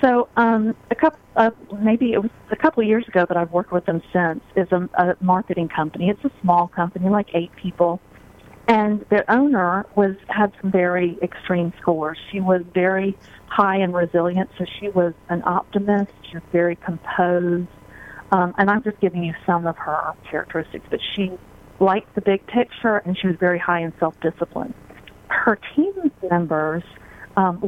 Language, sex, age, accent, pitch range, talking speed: English, female, 40-59, American, 170-200 Hz, 180 wpm